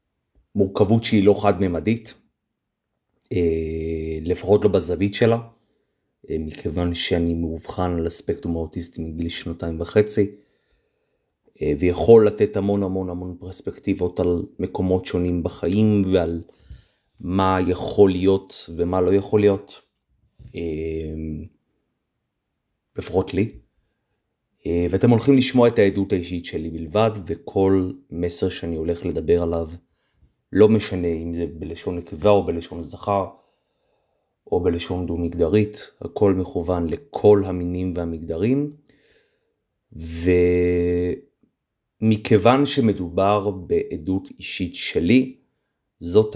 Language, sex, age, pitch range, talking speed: Hebrew, male, 30-49, 85-105 Hz, 95 wpm